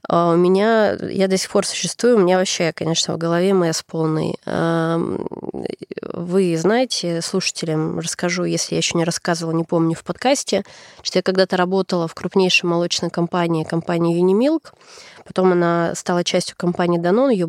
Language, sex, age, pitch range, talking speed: Russian, female, 20-39, 170-195 Hz, 160 wpm